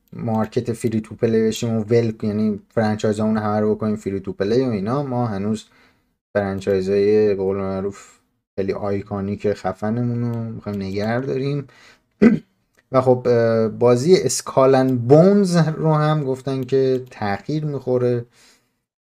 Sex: male